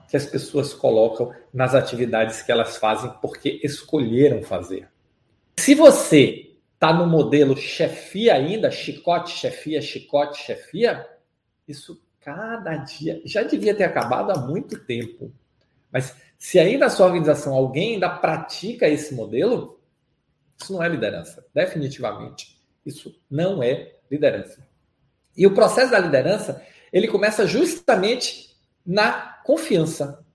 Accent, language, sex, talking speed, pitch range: Brazilian, Portuguese, male, 125 wpm, 140-215 Hz